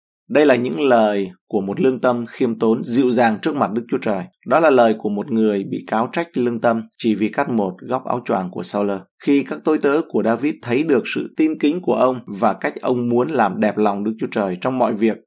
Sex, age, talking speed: male, 20-39, 250 wpm